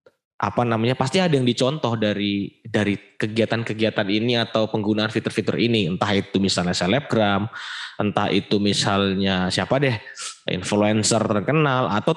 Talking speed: 130 wpm